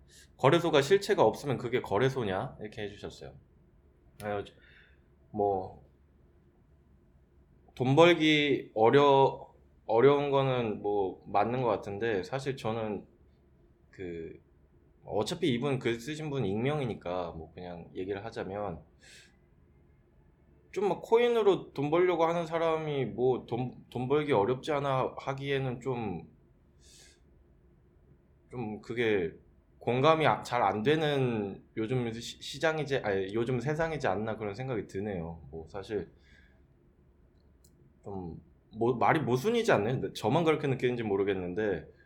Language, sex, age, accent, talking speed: English, male, 20-39, Korean, 95 wpm